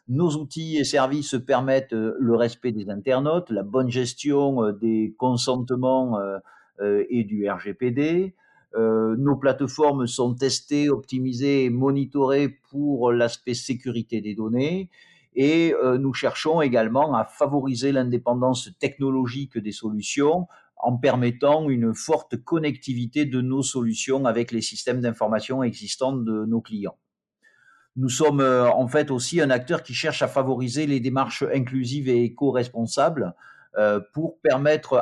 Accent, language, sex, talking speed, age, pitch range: French, French, male, 125 wpm, 50-69, 115-140 Hz